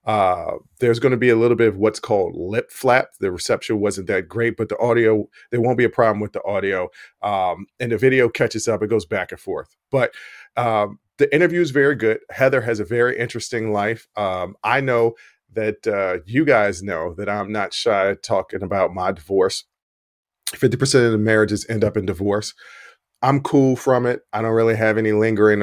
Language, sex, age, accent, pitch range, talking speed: English, male, 40-59, American, 100-125 Hz, 205 wpm